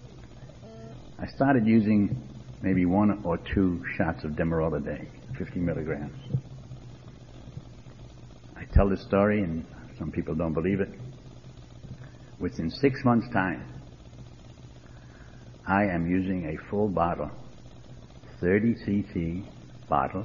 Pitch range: 95-125 Hz